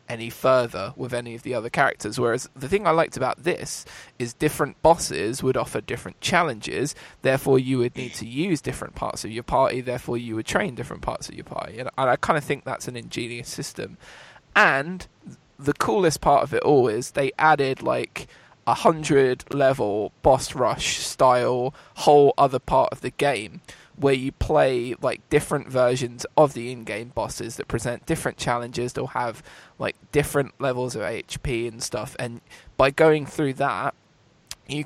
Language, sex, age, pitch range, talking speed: English, male, 20-39, 120-140 Hz, 175 wpm